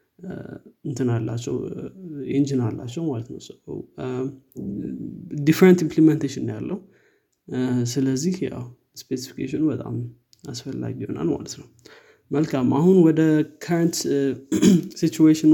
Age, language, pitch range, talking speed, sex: 20-39, Amharic, 130-160 Hz, 60 wpm, male